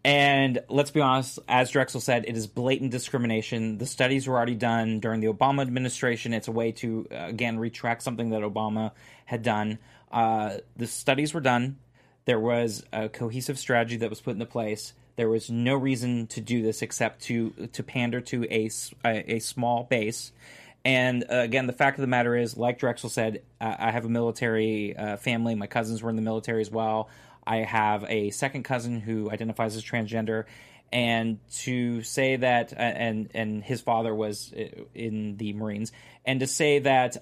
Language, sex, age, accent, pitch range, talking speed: English, male, 30-49, American, 110-130 Hz, 185 wpm